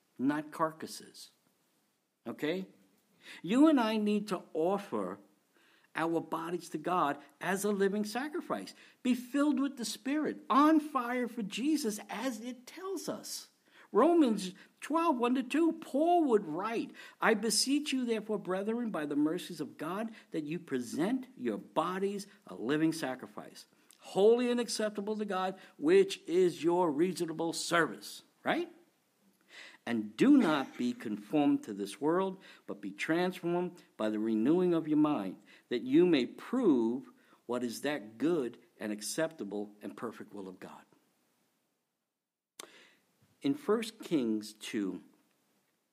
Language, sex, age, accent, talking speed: English, male, 60-79, American, 130 wpm